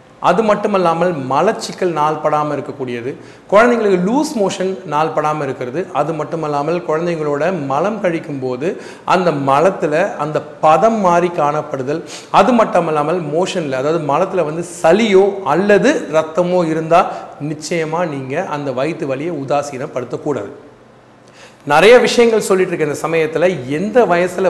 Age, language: 40-59, Tamil